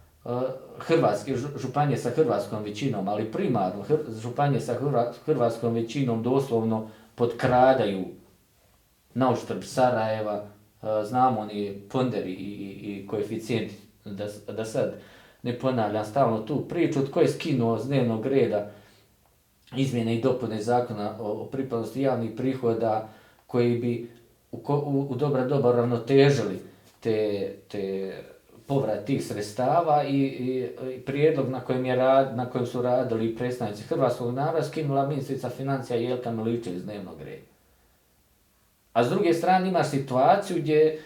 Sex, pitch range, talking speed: male, 110-135 Hz, 130 wpm